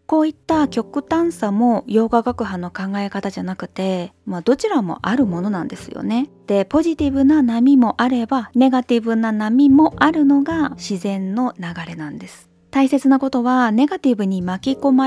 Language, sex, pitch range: Japanese, female, 200-270 Hz